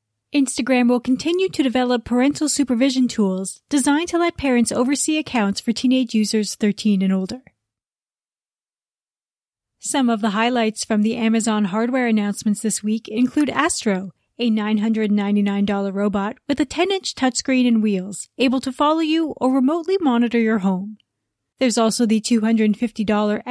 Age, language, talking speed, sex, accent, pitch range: 30-49, English, 140 wpm, female, American, 210-265 Hz